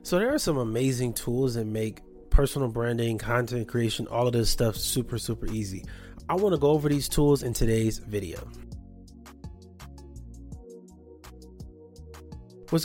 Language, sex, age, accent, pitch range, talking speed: English, male, 30-49, American, 110-165 Hz, 140 wpm